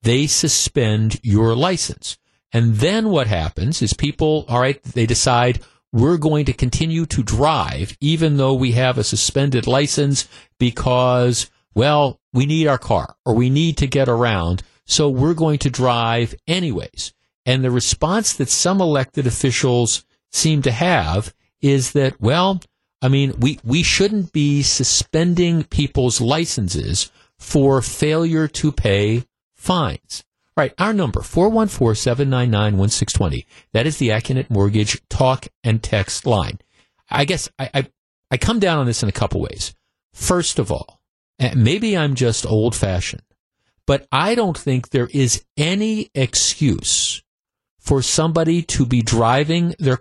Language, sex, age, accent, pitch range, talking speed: English, male, 50-69, American, 115-150 Hz, 155 wpm